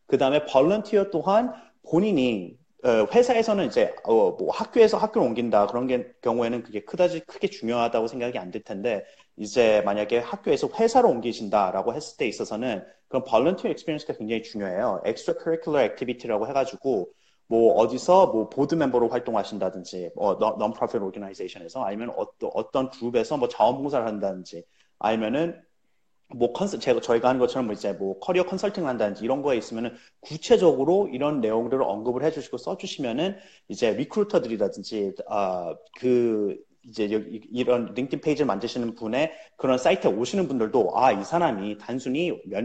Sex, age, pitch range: male, 30-49, 110-185 Hz